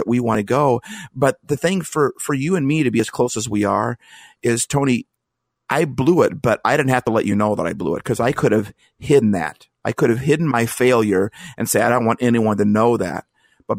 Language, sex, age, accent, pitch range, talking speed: English, male, 50-69, American, 105-130 Hz, 255 wpm